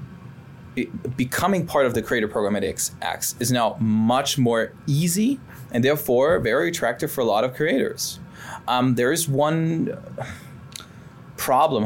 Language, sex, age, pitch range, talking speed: English, male, 20-39, 110-140 Hz, 140 wpm